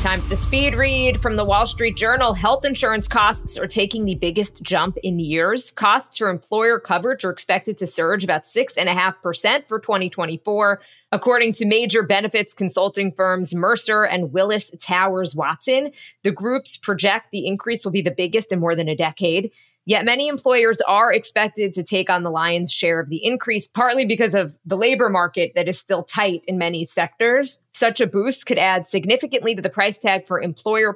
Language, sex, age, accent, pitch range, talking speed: English, female, 20-39, American, 180-220 Hz, 185 wpm